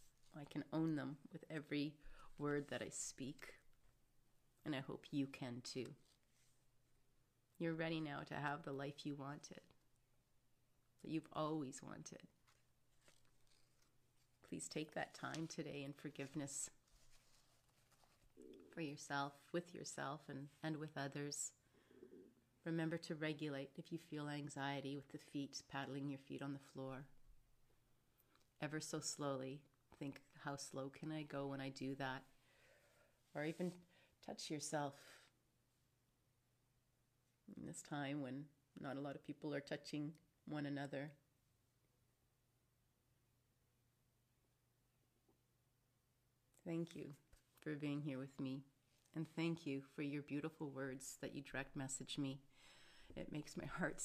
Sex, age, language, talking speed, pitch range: female, 30-49, English, 125 wpm, 125-150 Hz